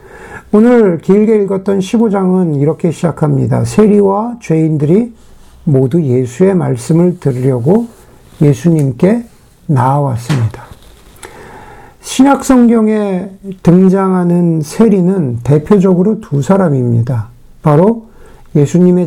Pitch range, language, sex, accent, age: 145-200 Hz, Korean, male, native, 50-69